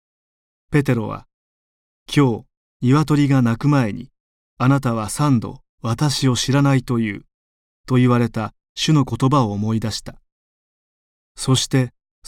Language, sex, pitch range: Japanese, male, 105-140 Hz